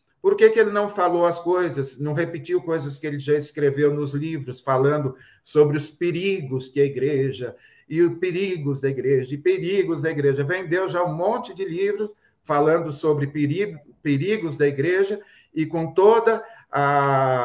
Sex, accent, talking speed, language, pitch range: male, Brazilian, 170 wpm, Portuguese, 140-180 Hz